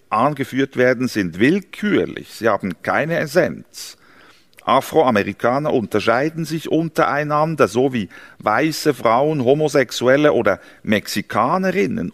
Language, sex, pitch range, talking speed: German, male, 110-150 Hz, 95 wpm